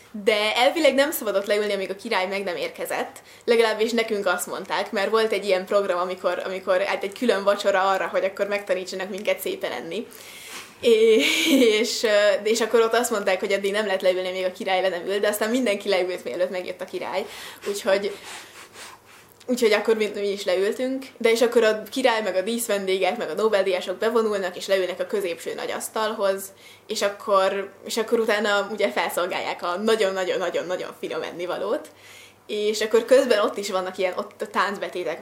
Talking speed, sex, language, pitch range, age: 170 wpm, female, Hungarian, 190-225 Hz, 20-39